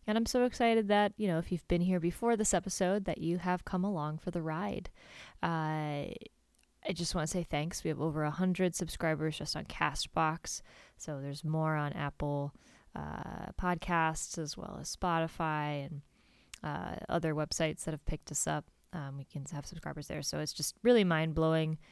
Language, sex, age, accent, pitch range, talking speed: English, female, 20-39, American, 145-175 Hz, 190 wpm